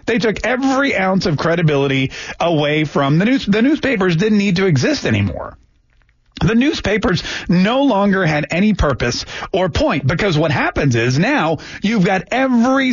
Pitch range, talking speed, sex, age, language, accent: 140-215 Hz, 160 wpm, male, 40-59, English, American